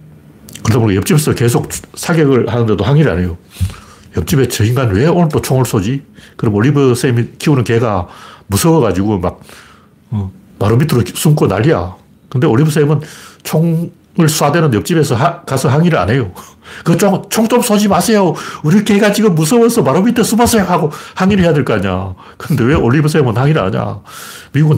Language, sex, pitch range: Korean, male, 105-155 Hz